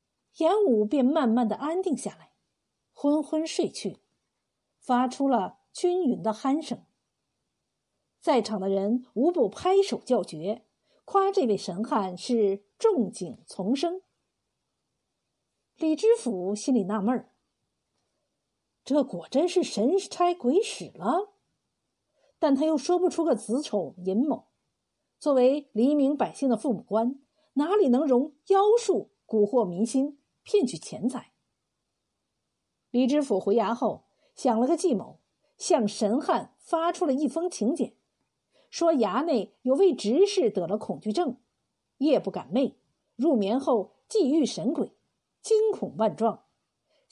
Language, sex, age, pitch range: Chinese, female, 50-69, 220-325 Hz